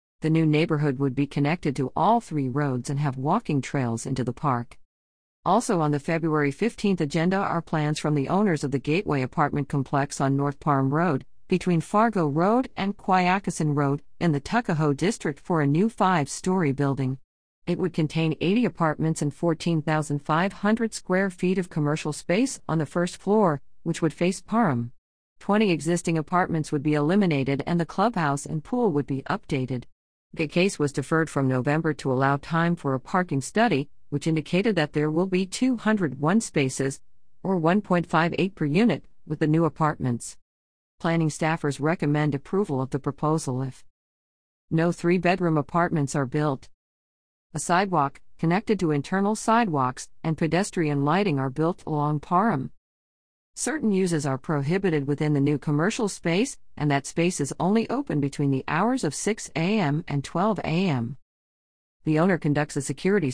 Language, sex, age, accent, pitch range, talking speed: English, female, 50-69, American, 140-180 Hz, 160 wpm